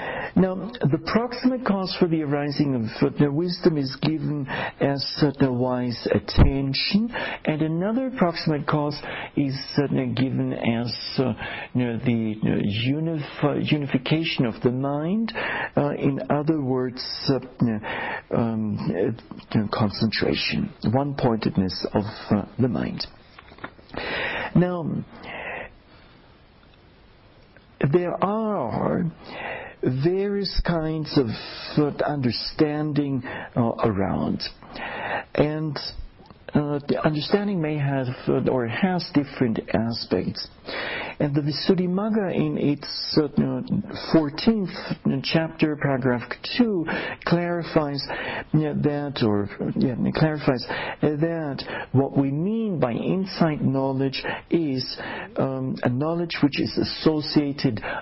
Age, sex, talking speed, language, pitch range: 60-79, male, 90 wpm, English, 125-165 Hz